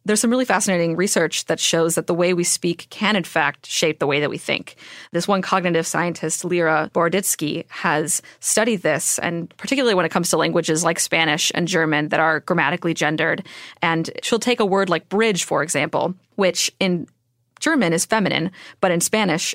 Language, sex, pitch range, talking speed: English, female, 165-195 Hz, 190 wpm